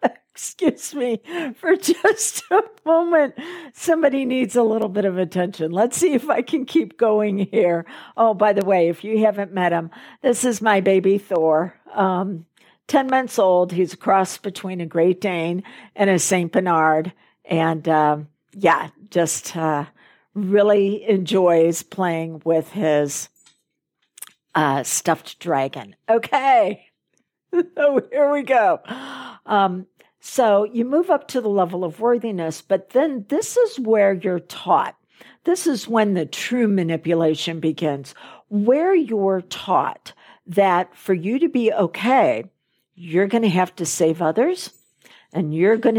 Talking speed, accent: 145 wpm, American